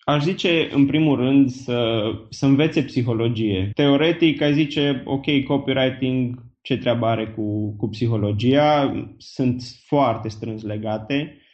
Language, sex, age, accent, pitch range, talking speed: Romanian, male, 20-39, native, 120-150 Hz, 125 wpm